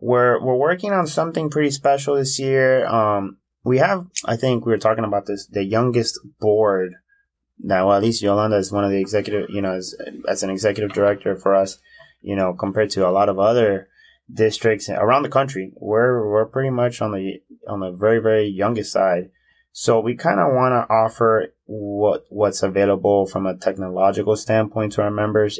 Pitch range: 95-115 Hz